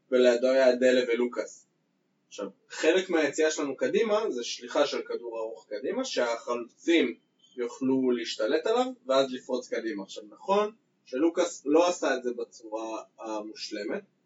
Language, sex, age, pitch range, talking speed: Hebrew, male, 20-39, 125-175 Hz, 130 wpm